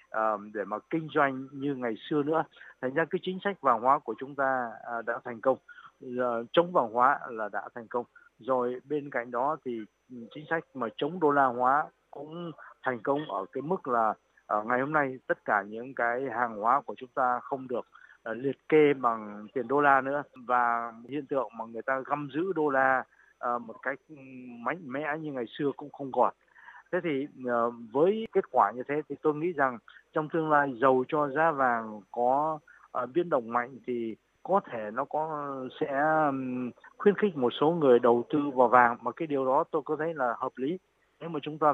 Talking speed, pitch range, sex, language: 200 wpm, 120-150 Hz, male, Vietnamese